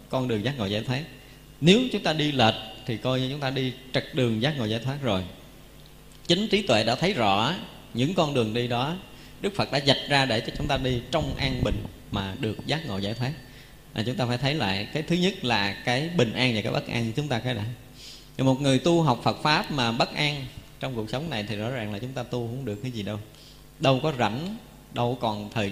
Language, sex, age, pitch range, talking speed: Vietnamese, male, 20-39, 110-140 Hz, 245 wpm